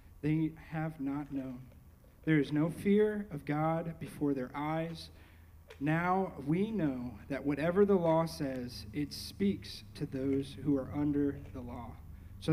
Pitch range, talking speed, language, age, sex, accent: 130-160 Hz, 150 wpm, English, 40-59, male, American